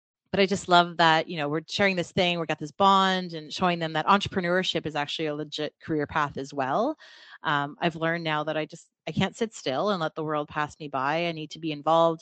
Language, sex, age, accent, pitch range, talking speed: English, female, 30-49, American, 155-190 Hz, 250 wpm